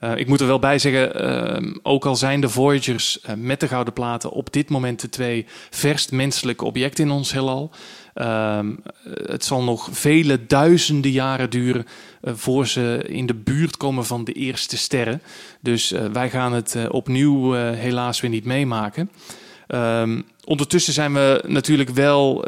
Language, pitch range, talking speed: Dutch, 120-145 Hz, 150 wpm